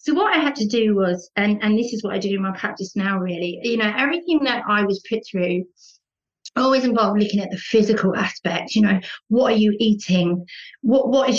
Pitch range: 200-245 Hz